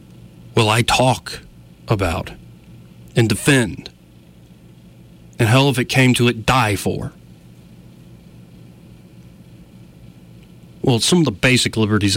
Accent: American